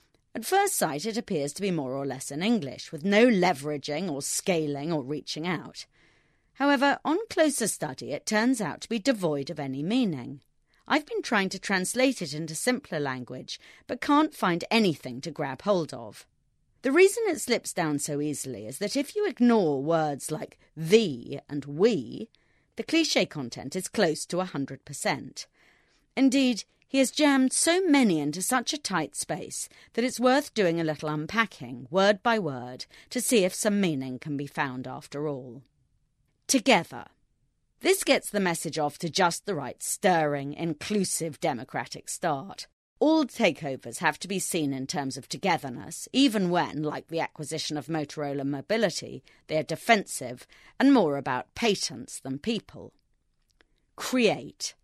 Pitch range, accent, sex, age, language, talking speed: 145-235 Hz, British, female, 30-49, English, 160 wpm